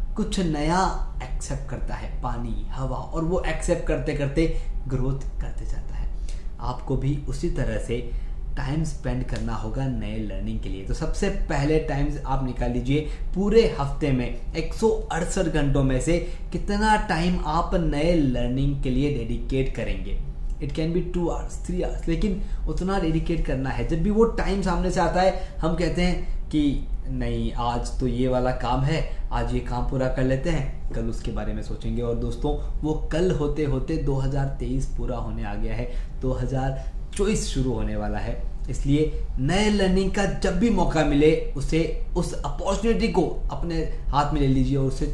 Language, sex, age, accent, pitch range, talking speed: Hindi, male, 20-39, native, 125-170 Hz, 175 wpm